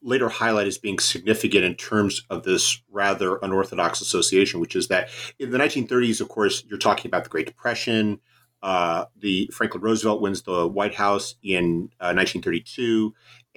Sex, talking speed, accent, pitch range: male, 165 wpm, American, 100-125 Hz